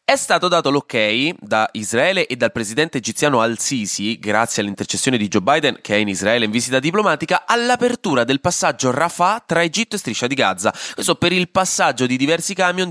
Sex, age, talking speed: male, 20-39, 185 wpm